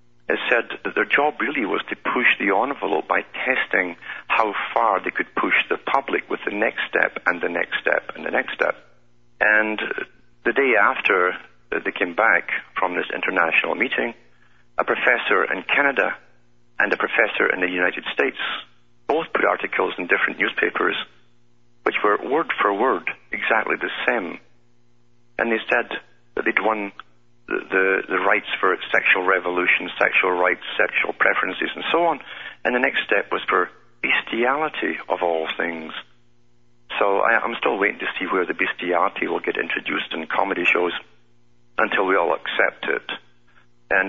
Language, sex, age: English, male, 60-79